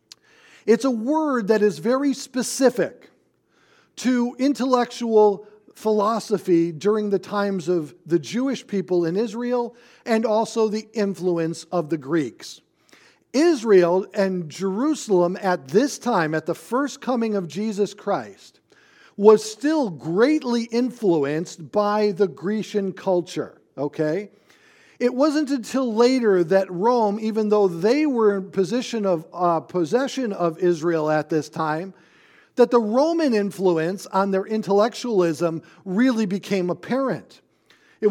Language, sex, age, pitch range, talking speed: English, male, 50-69, 185-240 Hz, 125 wpm